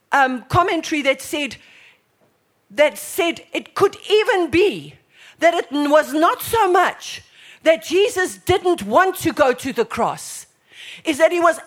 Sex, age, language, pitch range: female, 50-69, English, 215-335 Hz